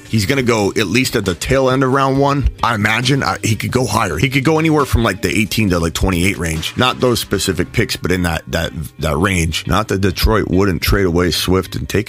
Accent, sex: American, male